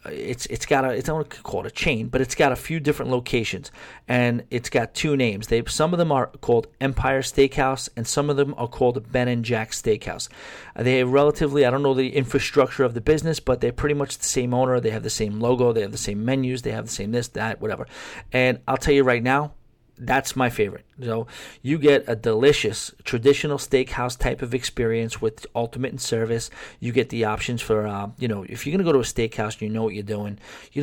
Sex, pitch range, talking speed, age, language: male, 115-140 Hz, 230 wpm, 40-59, English